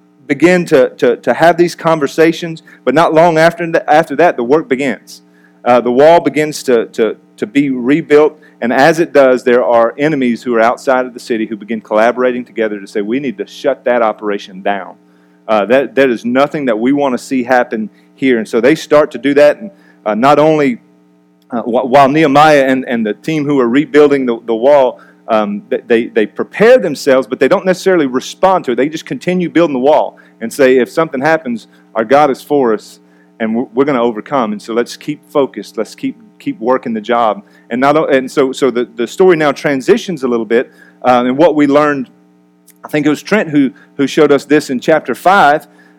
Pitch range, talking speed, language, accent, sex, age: 115-155 Hz, 210 wpm, English, American, male, 40-59